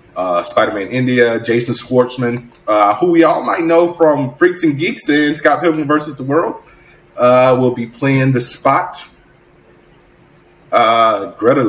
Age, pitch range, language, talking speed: 30-49, 105-150 Hz, English, 150 wpm